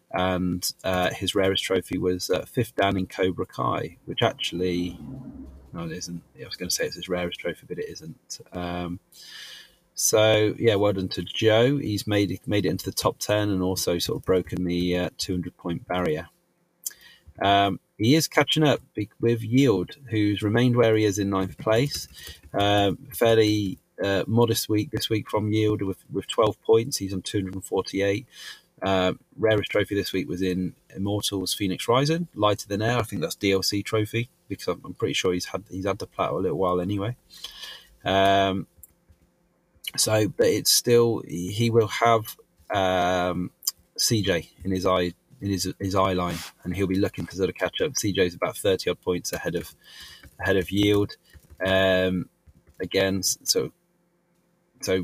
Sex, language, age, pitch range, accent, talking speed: male, English, 30-49, 90-110 Hz, British, 170 wpm